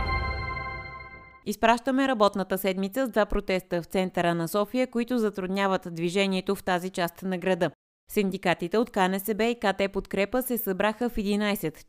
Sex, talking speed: female, 140 wpm